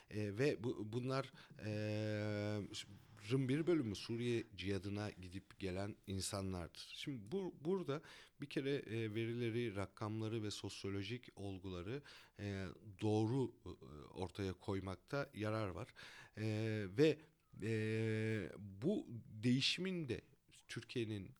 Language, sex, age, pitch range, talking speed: German, male, 40-59, 95-120 Hz, 80 wpm